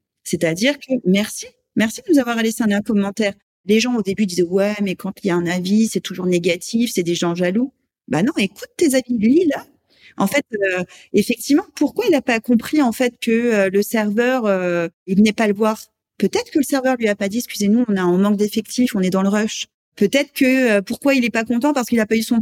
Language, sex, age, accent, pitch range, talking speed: French, female, 40-59, French, 200-265 Hz, 250 wpm